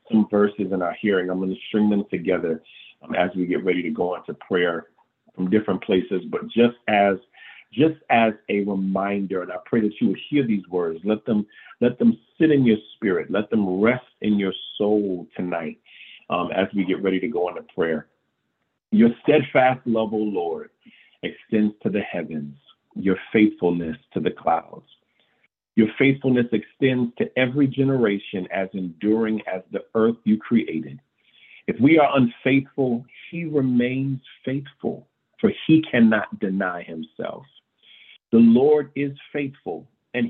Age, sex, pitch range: 40-59, male, 100-140 Hz